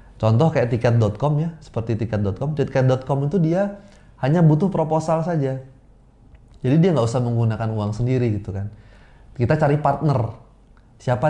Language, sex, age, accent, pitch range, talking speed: Indonesian, male, 20-39, native, 110-140 Hz, 140 wpm